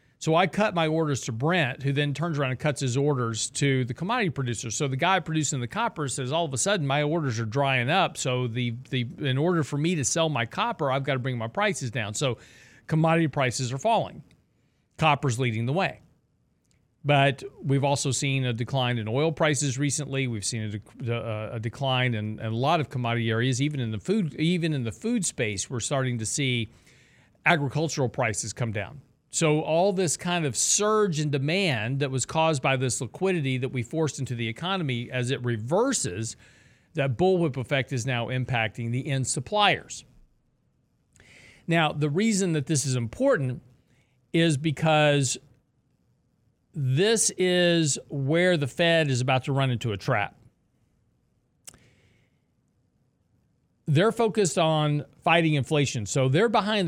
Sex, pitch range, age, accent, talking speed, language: male, 125-160 Hz, 40-59, American, 170 wpm, English